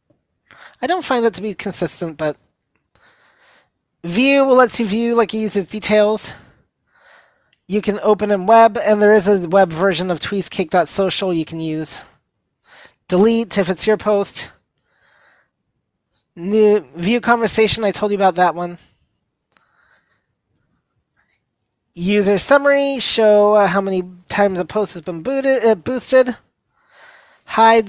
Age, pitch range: 20-39, 185-235 Hz